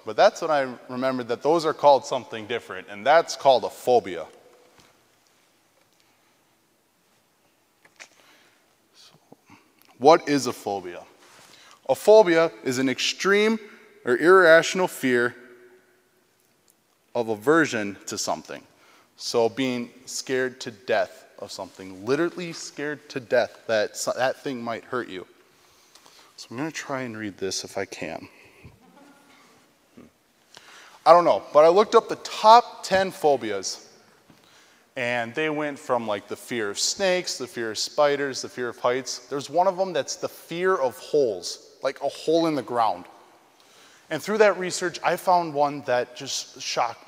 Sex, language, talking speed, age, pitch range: male, English, 145 wpm, 20-39, 125-175 Hz